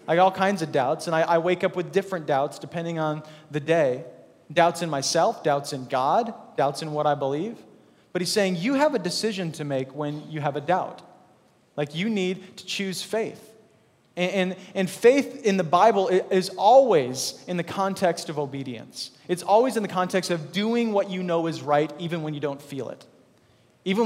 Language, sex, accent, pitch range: English, male, American, 150-190 Hz